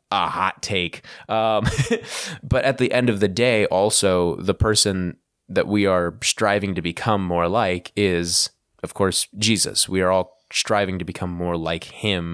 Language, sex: English, male